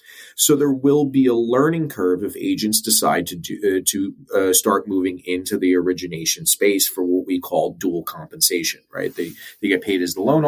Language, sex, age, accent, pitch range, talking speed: English, male, 30-49, American, 95-130 Hz, 200 wpm